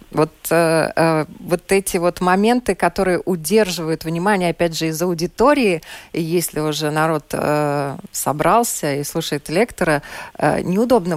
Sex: female